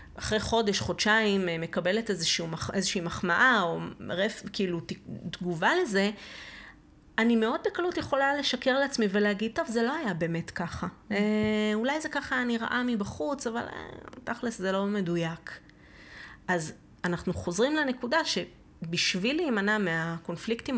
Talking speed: 130 wpm